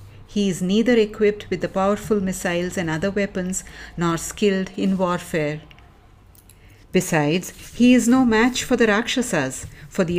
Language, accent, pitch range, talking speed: English, Indian, 165-215 Hz, 145 wpm